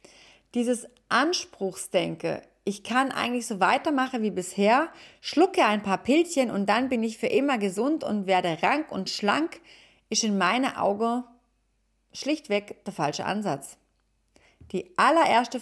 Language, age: German, 30-49